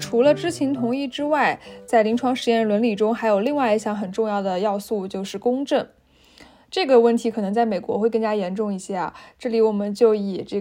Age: 10-29